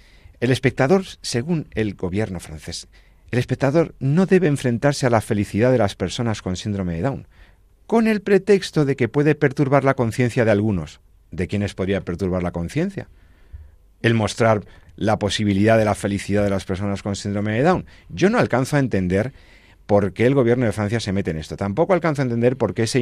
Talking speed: 195 wpm